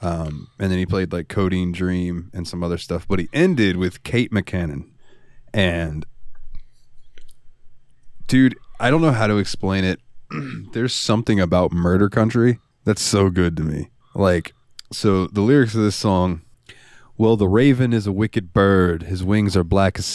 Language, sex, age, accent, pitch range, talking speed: English, male, 20-39, American, 90-105 Hz, 165 wpm